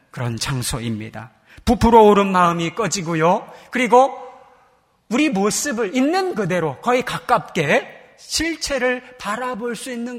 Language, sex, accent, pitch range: Korean, male, native, 155-250 Hz